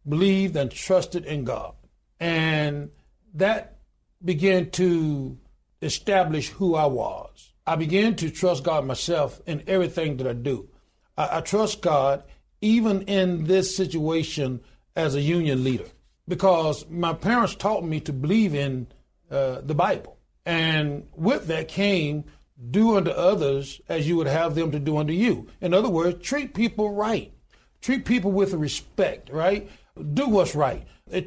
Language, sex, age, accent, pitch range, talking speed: English, male, 60-79, American, 150-190 Hz, 150 wpm